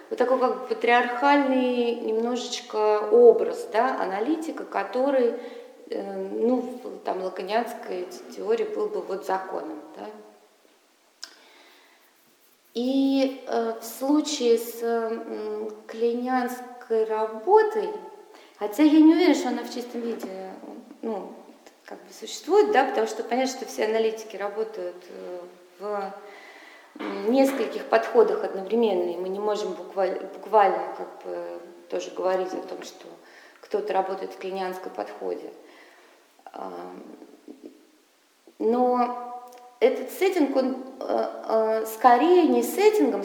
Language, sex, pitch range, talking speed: English, female, 220-330 Hz, 110 wpm